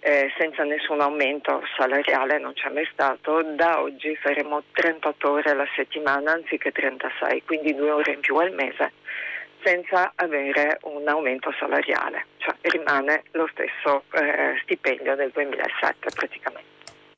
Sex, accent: female, native